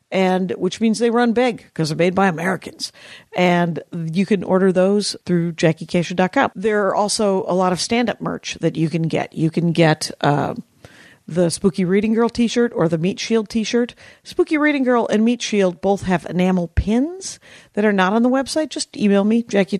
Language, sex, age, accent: English, female, 50-69, American